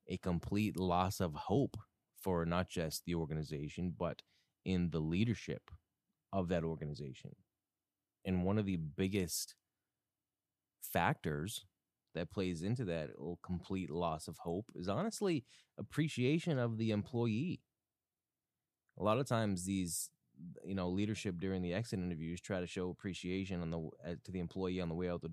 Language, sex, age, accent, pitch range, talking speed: English, male, 20-39, American, 85-105 Hz, 150 wpm